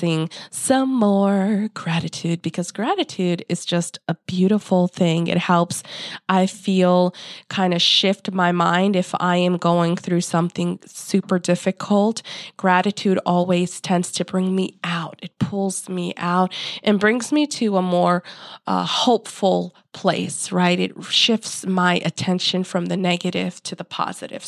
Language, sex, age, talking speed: English, female, 20-39, 145 wpm